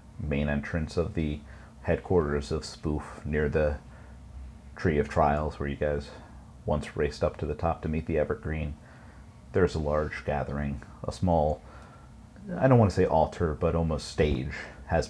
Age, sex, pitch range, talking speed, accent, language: 40-59, male, 70-85 Hz, 165 wpm, American, English